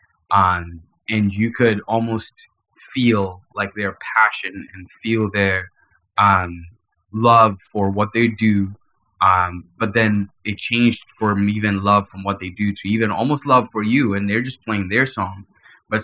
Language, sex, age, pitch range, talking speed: English, male, 20-39, 95-110 Hz, 160 wpm